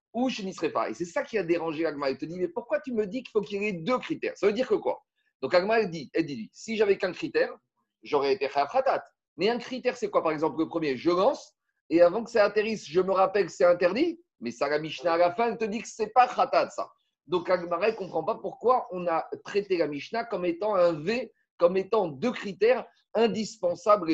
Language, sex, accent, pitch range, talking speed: French, male, French, 145-230 Hz, 255 wpm